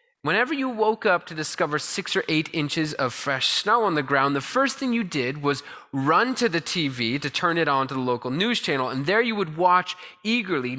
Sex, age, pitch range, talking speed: male, 20-39, 145-210 Hz, 230 wpm